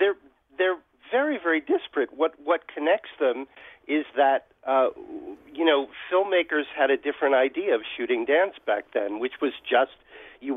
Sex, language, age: male, English, 50-69